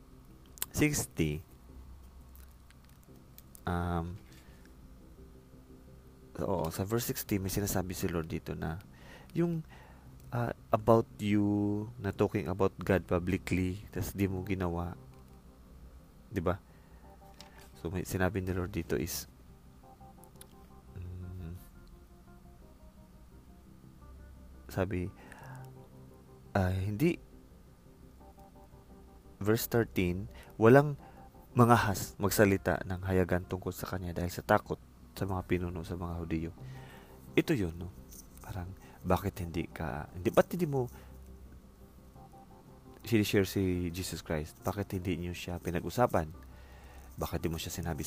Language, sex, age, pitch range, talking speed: English, male, 20-39, 65-95 Hz, 105 wpm